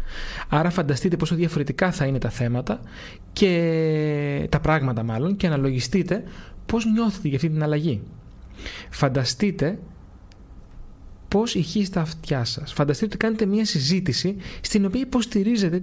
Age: 30-49